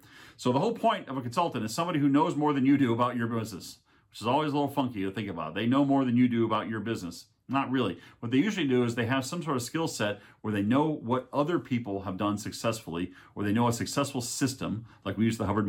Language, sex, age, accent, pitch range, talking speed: English, male, 40-59, American, 100-135 Hz, 270 wpm